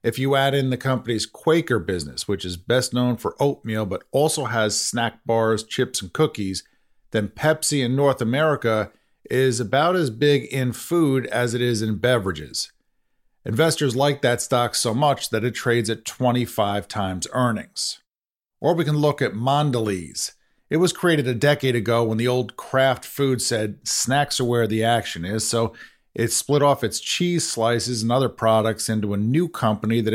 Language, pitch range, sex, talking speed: English, 110-130 Hz, male, 180 wpm